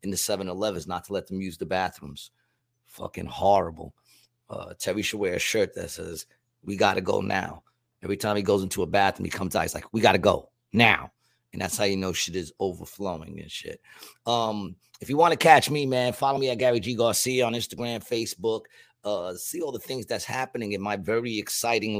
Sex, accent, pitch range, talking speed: male, American, 100-120 Hz, 215 wpm